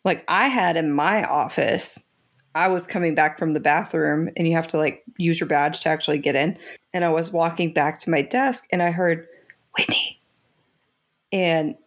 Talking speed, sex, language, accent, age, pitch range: 190 wpm, female, English, American, 40-59, 165-215 Hz